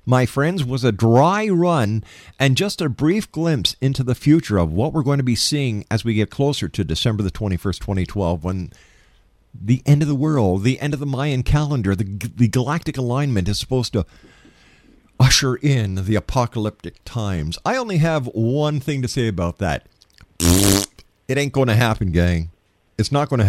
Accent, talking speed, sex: American, 185 wpm, male